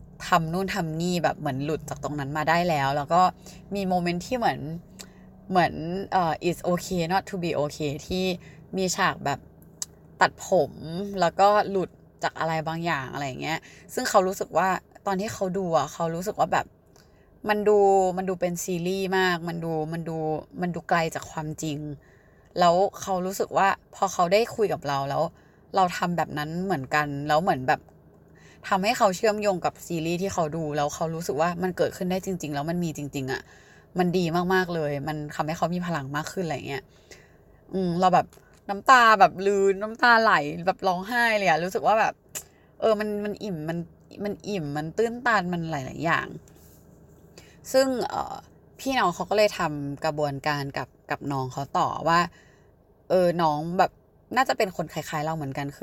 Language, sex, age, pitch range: Thai, female, 20-39, 155-190 Hz